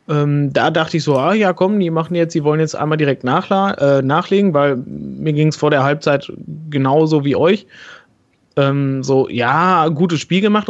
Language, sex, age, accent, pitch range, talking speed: German, male, 30-49, German, 145-180 Hz, 180 wpm